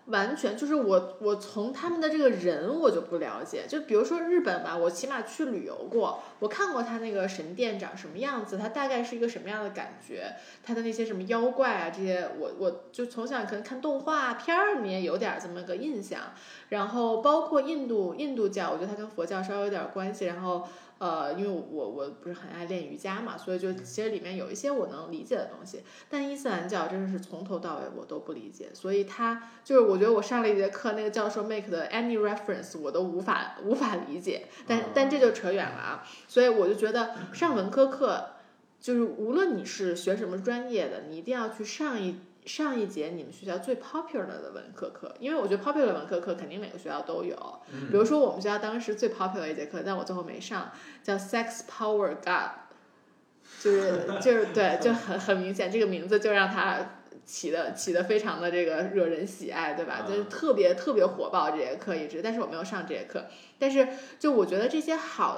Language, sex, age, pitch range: Chinese, female, 20-39, 185-260 Hz